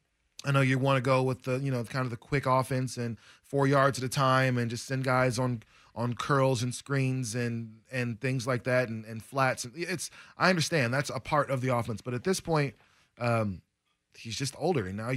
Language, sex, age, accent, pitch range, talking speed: English, male, 20-39, American, 115-135 Hz, 225 wpm